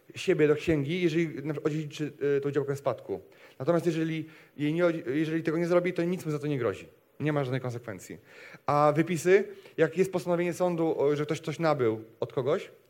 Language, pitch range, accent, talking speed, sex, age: Polish, 150-180 Hz, native, 185 wpm, male, 30-49